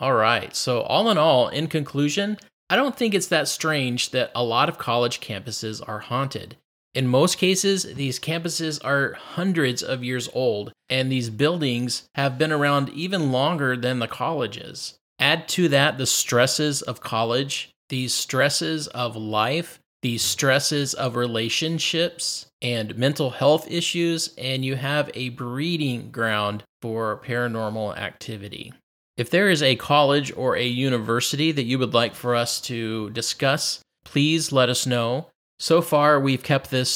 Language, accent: English, American